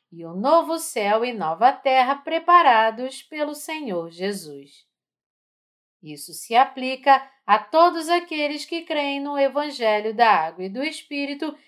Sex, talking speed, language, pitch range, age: female, 135 wpm, Portuguese, 190-285 Hz, 40-59